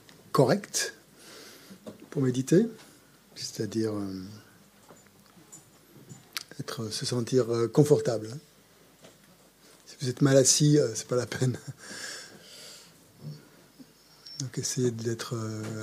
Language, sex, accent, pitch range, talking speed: French, male, French, 115-145 Hz, 90 wpm